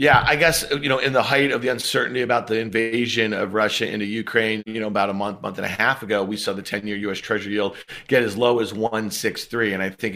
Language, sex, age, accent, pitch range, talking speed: English, male, 40-59, American, 110-130 Hz, 265 wpm